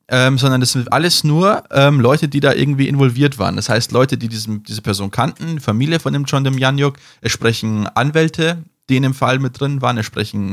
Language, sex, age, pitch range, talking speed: German, male, 20-39, 120-145 Hz, 220 wpm